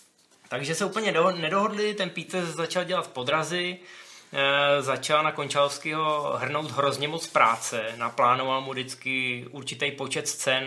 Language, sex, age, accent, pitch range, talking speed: Czech, male, 20-39, native, 125-150 Hz, 125 wpm